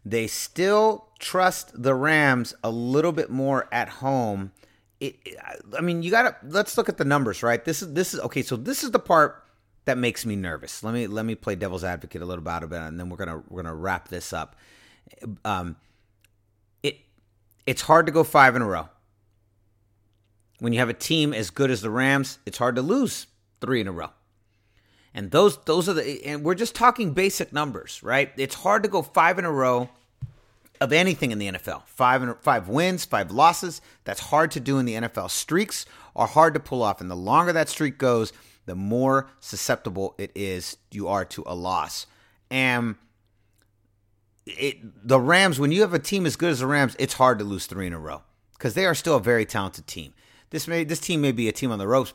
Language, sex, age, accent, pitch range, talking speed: English, male, 30-49, American, 100-145 Hz, 220 wpm